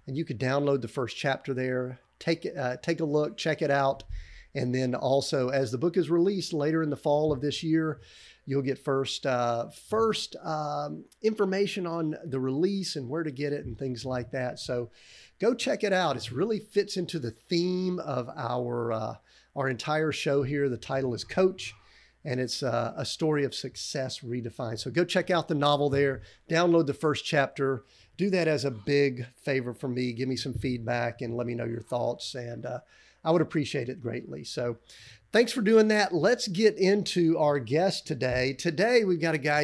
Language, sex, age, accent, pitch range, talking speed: English, male, 50-69, American, 130-170 Hz, 200 wpm